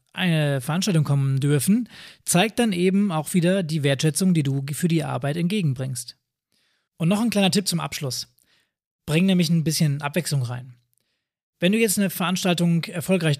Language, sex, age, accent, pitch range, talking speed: German, male, 20-39, German, 145-185 Hz, 160 wpm